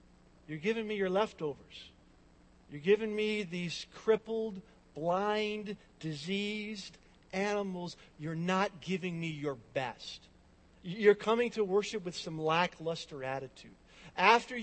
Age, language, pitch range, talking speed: 50-69, English, 175-220 Hz, 115 wpm